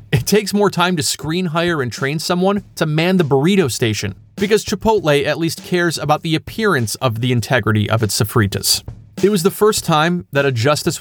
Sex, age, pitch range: male, 30-49, 125-180 Hz